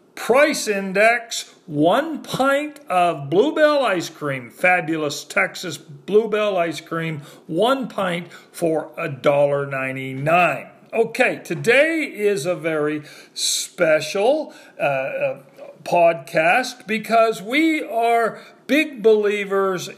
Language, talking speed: English, 90 wpm